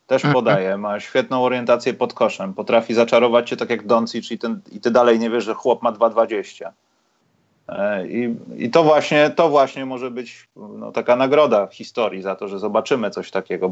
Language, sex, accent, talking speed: Polish, male, native, 185 wpm